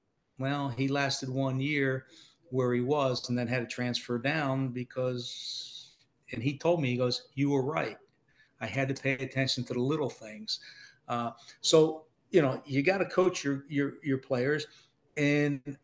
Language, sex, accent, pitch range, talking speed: English, male, American, 125-145 Hz, 175 wpm